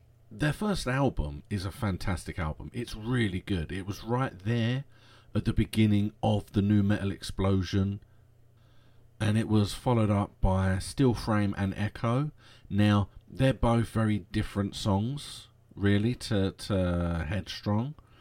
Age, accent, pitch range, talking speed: 40-59, British, 100-120 Hz, 140 wpm